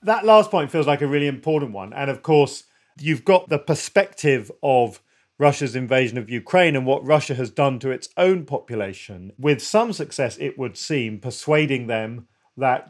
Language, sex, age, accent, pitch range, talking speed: English, male, 40-59, British, 120-150 Hz, 180 wpm